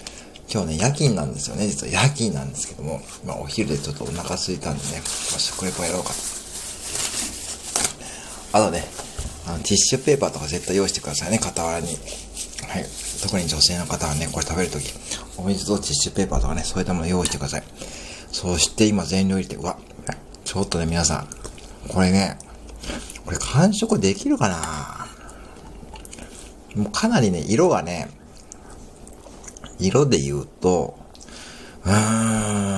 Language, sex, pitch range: Japanese, male, 75-105 Hz